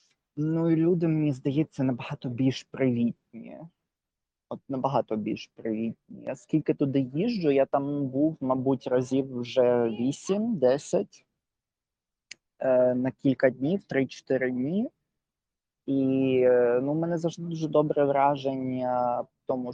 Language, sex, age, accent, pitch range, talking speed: Ukrainian, male, 20-39, native, 125-145 Hz, 110 wpm